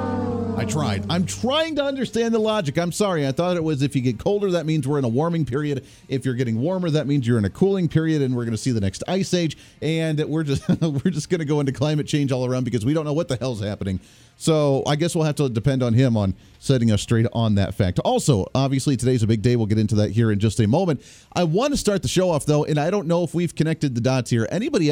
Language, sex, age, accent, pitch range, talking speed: English, male, 40-59, American, 115-160 Hz, 280 wpm